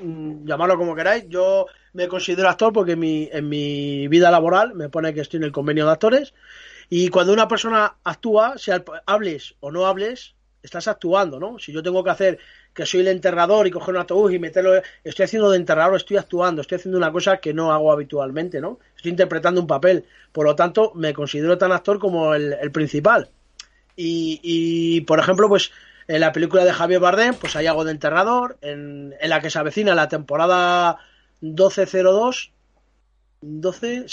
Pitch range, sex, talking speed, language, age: 160-195 Hz, male, 190 wpm, Spanish, 30-49